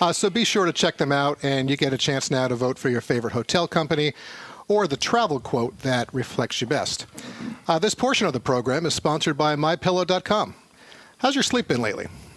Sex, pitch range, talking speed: male, 130-175 Hz, 215 wpm